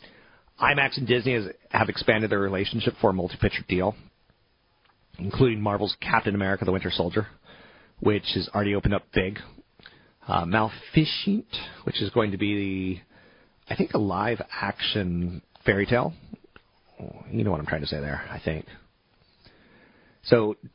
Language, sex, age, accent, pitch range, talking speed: English, male, 30-49, American, 95-120 Hz, 140 wpm